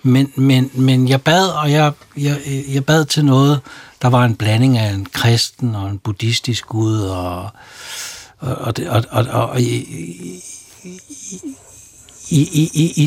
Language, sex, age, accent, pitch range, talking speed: Danish, male, 60-79, native, 115-145 Hz, 115 wpm